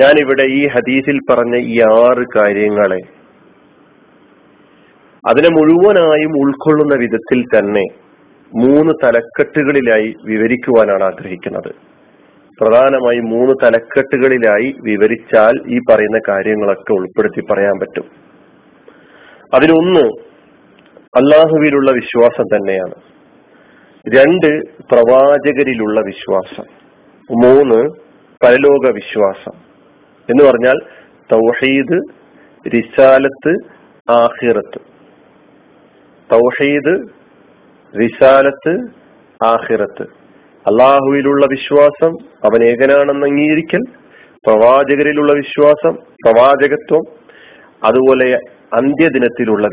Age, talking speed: 40-59, 65 wpm